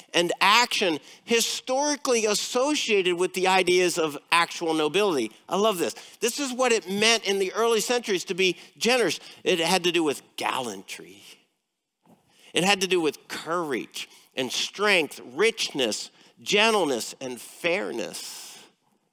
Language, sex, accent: English, male, American